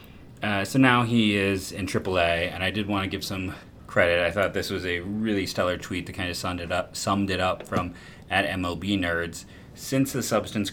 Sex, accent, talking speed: male, American, 220 wpm